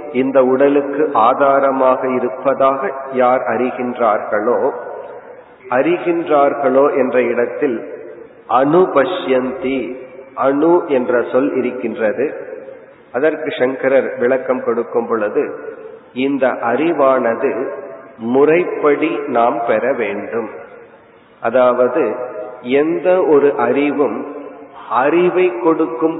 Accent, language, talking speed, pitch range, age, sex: native, Tamil, 70 wpm, 130-180 Hz, 40-59, male